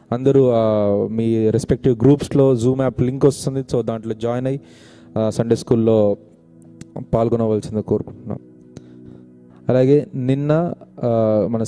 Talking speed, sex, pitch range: 100 wpm, male, 110-130 Hz